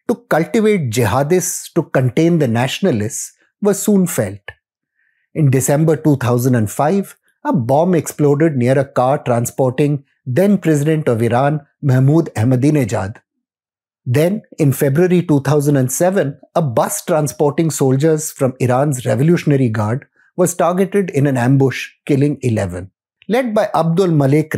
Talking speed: 115 wpm